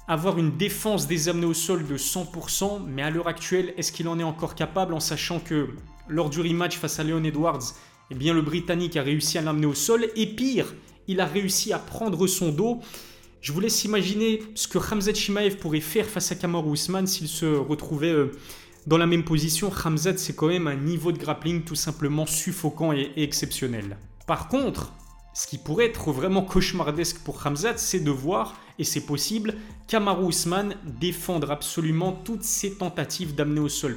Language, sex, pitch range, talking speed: French, male, 150-190 Hz, 190 wpm